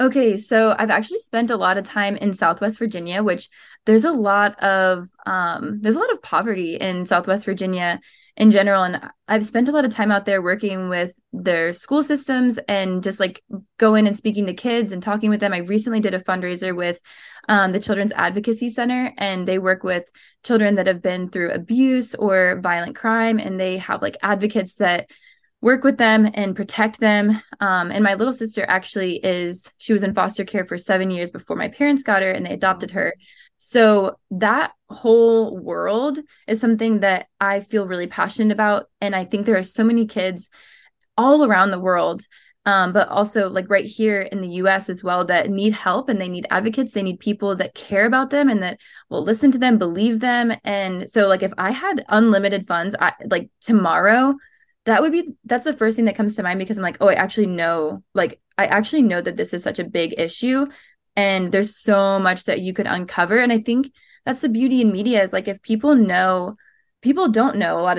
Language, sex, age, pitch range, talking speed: English, female, 20-39, 190-225 Hz, 210 wpm